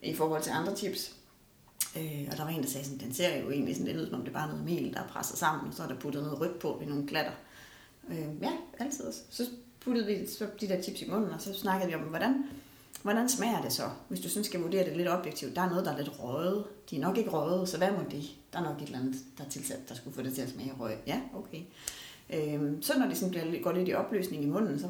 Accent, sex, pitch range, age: native, female, 145-205 Hz, 30-49